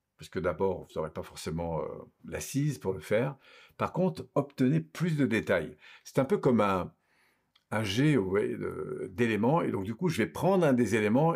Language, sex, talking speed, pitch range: French, male, 195 wpm, 105-150 Hz